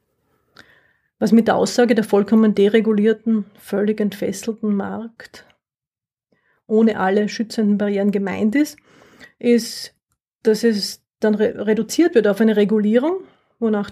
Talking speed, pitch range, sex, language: 110 wpm, 205-230 Hz, female, English